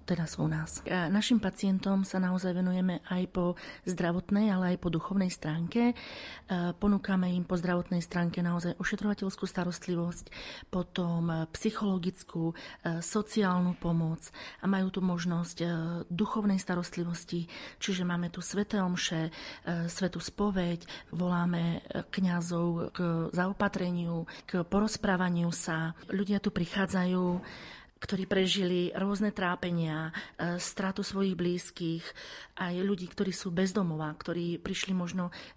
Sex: female